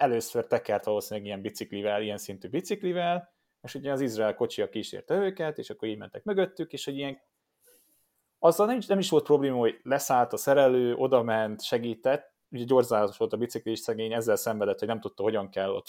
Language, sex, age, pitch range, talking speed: Hungarian, male, 30-49, 110-180 Hz, 185 wpm